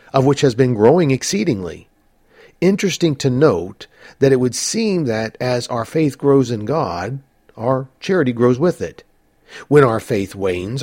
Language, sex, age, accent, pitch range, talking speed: English, male, 50-69, American, 110-150 Hz, 160 wpm